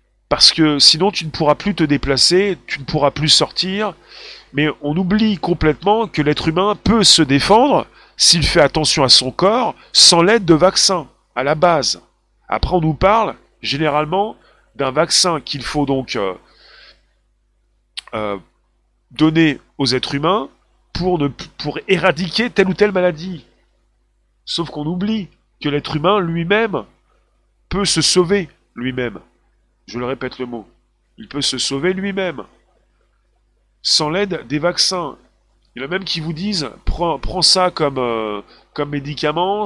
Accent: French